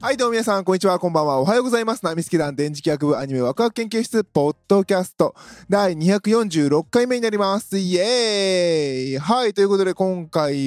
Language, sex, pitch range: Japanese, male, 150-205 Hz